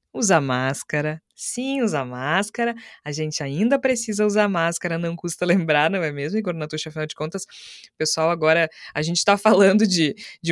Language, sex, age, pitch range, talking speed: Portuguese, female, 20-39, 155-225 Hz, 170 wpm